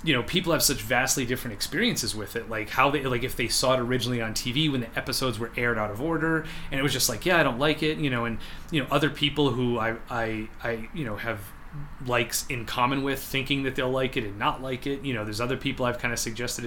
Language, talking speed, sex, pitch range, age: English, 270 wpm, male, 110-135 Hz, 30-49